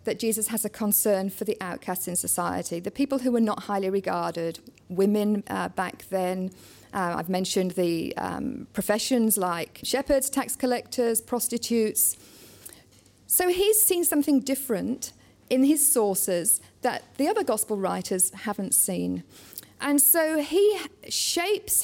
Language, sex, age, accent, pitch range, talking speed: English, female, 40-59, British, 195-275 Hz, 140 wpm